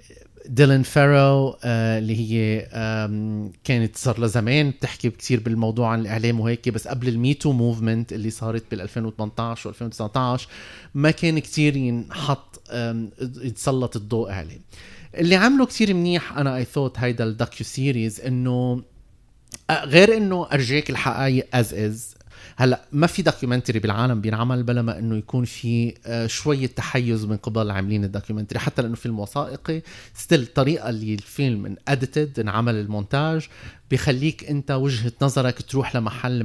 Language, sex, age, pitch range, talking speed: Arabic, male, 30-49, 115-145 Hz, 130 wpm